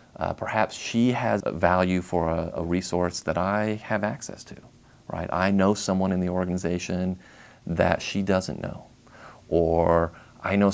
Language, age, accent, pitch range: English, 40-59, American, 90-115 Hz